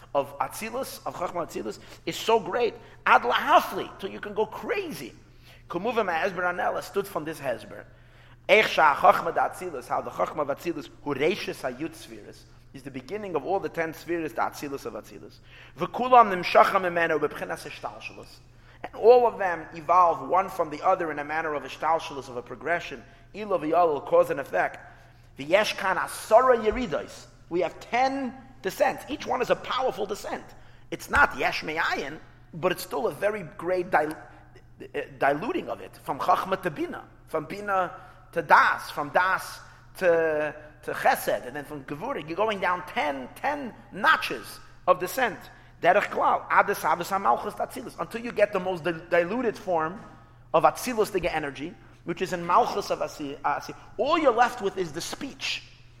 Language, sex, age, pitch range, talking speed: English, male, 30-49, 150-210 Hz, 160 wpm